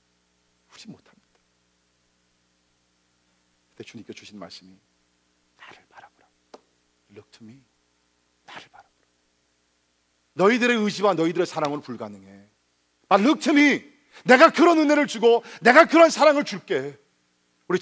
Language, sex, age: Korean, male, 50-69